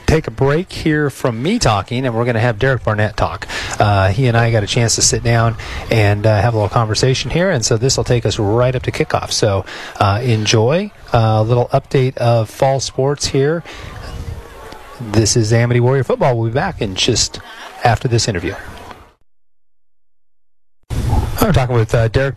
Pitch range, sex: 110-130 Hz, male